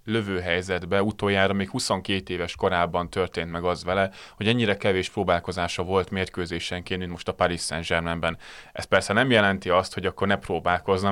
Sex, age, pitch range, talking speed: male, 30-49, 90-105 Hz, 165 wpm